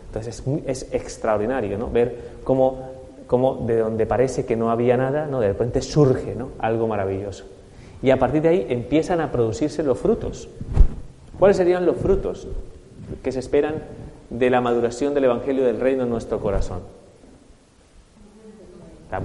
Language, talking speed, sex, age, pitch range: Spanish, 155 wpm, male, 30-49, 115-145 Hz